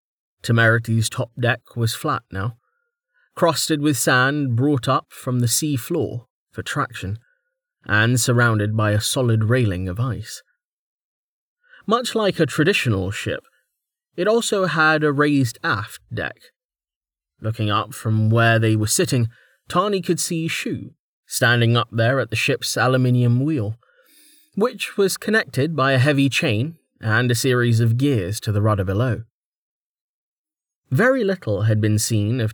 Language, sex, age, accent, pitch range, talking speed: English, male, 20-39, British, 115-160 Hz, 145 wpm